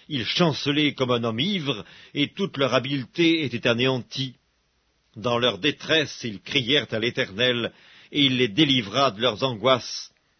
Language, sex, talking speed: English, male, 150 wpm